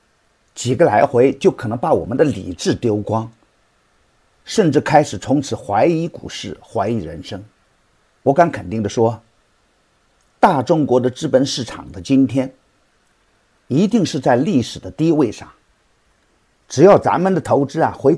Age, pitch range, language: 50-69, 115-175 Hz, Chinese